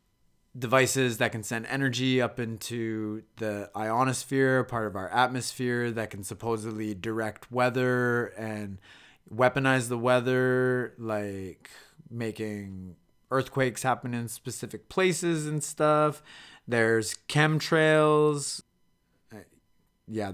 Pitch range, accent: 110-130 Hz, American